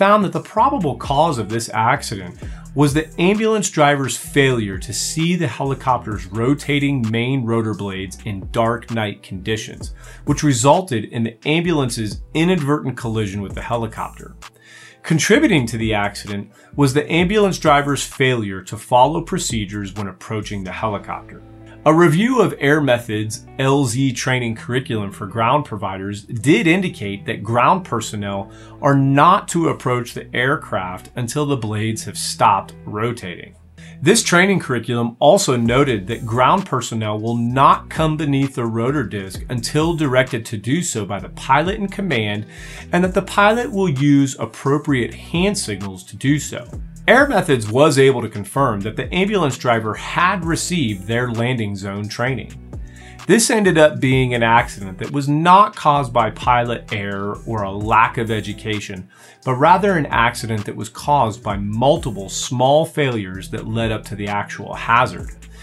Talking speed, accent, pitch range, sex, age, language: 155 wpm, American, 110-150 Hz, male, 30-49, English